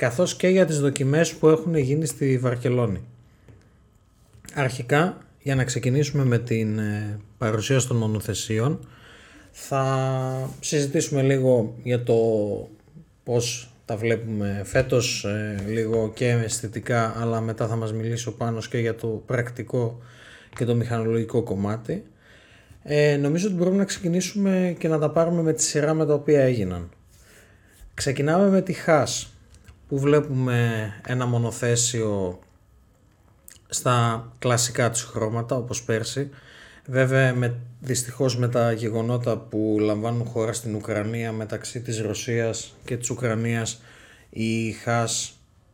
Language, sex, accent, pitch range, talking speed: Greek, male, native, 110-130 Hz, 125 wpm